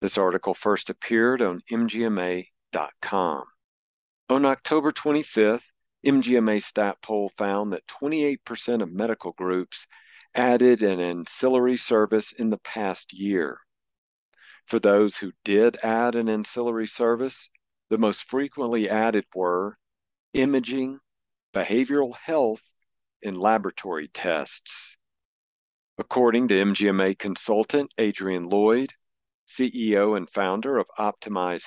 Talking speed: 105 wpm